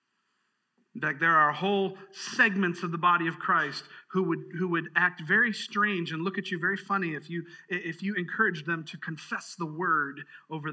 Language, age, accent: English, 40-59, American